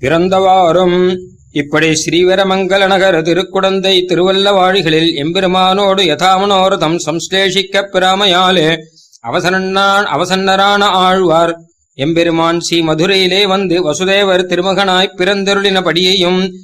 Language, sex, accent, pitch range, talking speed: Tamil, male, native, 170-195 Hz, 75 wpm